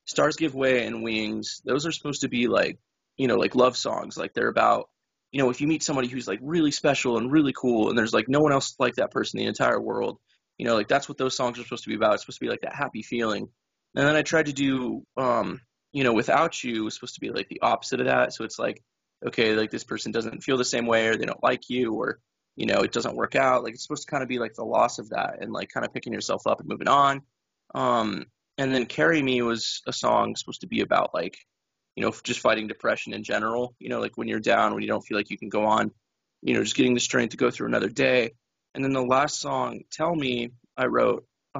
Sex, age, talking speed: male, 20-39, 270 wpm